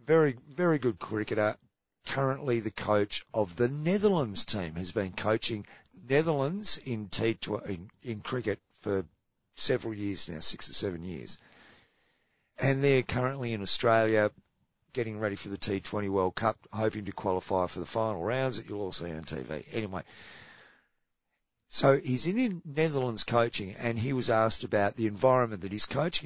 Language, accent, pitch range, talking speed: English, Australian, 105-135 Hz, 160 wpm